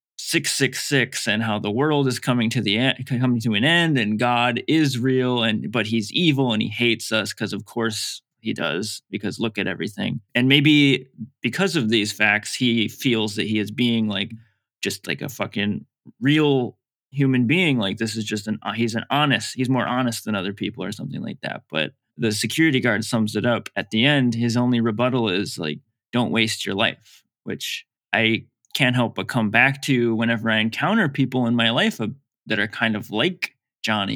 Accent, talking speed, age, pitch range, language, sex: American, 200 wpm, 20-39, 110-130 Hz, English, male